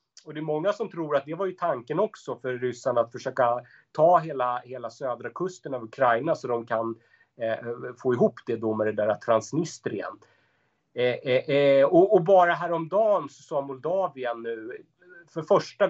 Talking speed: 175 wpm